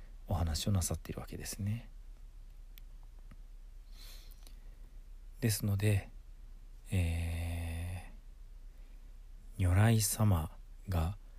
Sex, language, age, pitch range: male, Japanese, 40-59, 80-110 Hz